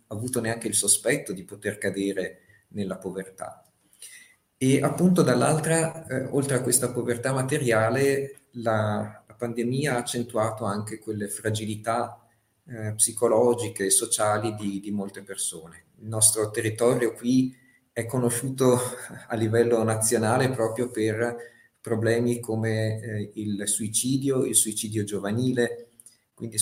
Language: Italian